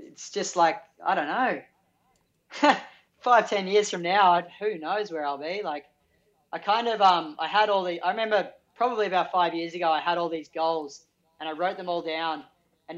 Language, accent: English, Australian